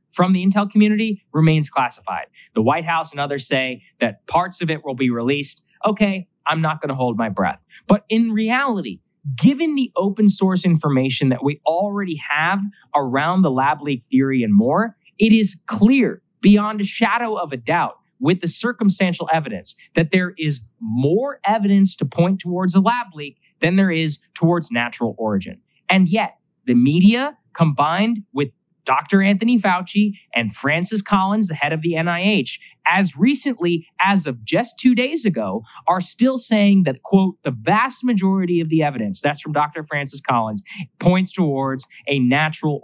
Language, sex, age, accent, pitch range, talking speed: English, male, 20-39, American, 145-205 Hz, 170 wpm